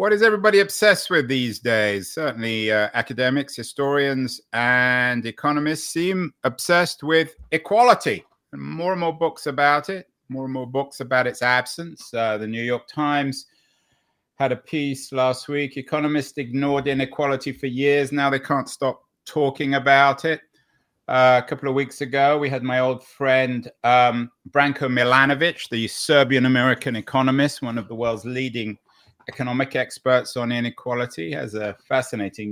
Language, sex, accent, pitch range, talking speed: English, male, British, 125-150 Hz, 150 wpm